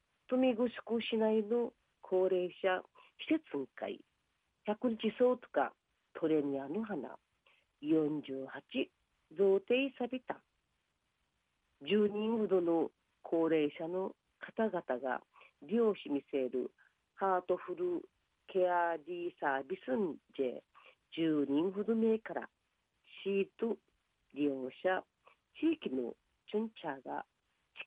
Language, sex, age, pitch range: Japanese, female, 40-59, 150-235 Hz